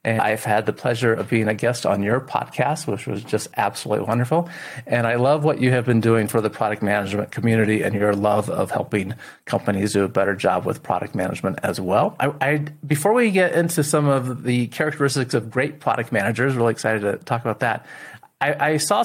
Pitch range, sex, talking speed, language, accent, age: 110-135 Hz, male, 210 wpm, English, American, 30-49